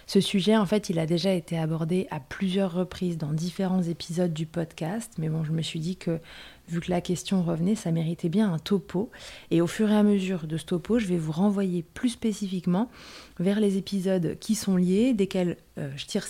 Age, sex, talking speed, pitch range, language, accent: 20-39, female, 215 wpm, 175-210 Hz, French, French